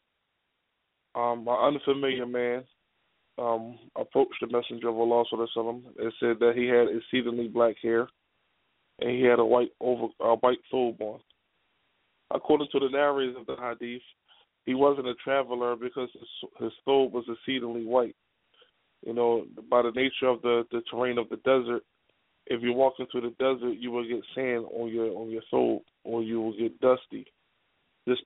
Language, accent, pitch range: English, American, 120-130 Hz